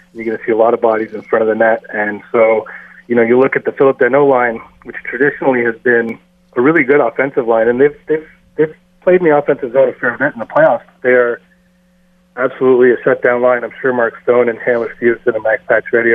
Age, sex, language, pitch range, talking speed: 30-49, male, English, 115-140 Hz, 240 wpm